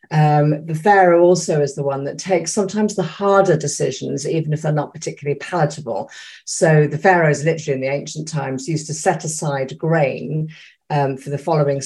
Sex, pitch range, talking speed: female, 145-180 Hz, 180 wpm